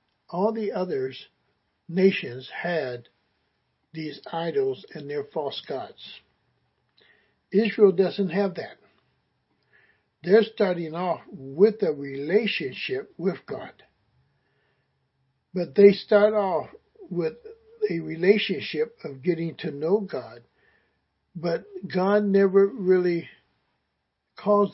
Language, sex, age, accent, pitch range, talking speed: English, male, 60-79, American, 155-205 Hz, 95 wpm